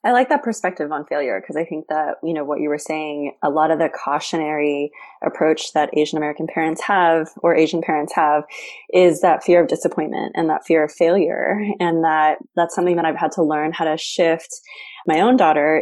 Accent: American